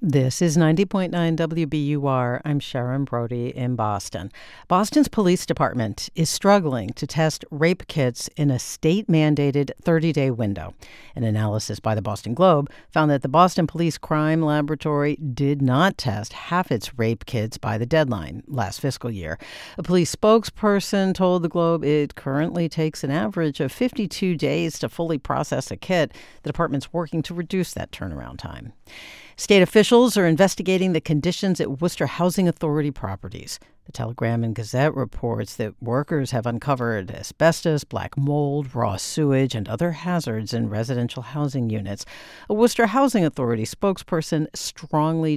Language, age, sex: English, 50-69, female